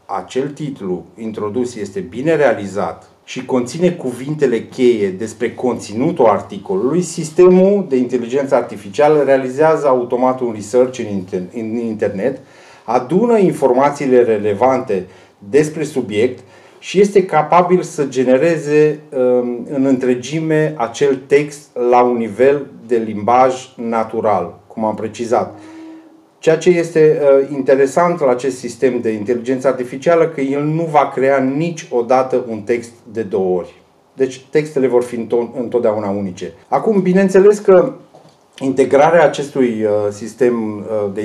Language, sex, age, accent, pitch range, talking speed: Romanian, male, 30-49, native, 115-150 Hz, 115 wpm